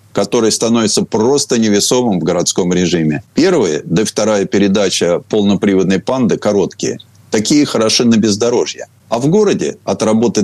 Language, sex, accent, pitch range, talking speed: Russian, male, native, 100-140 Hz, 130 wpm